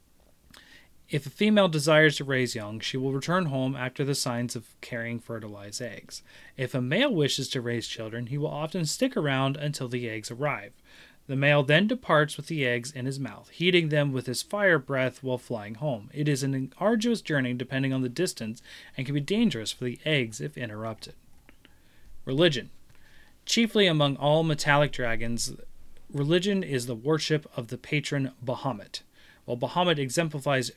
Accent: American